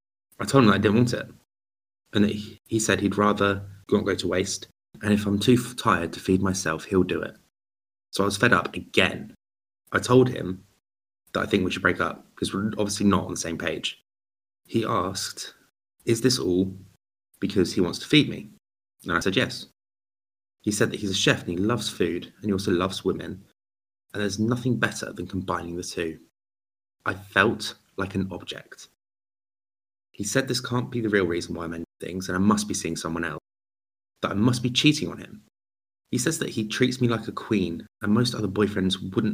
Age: 20-39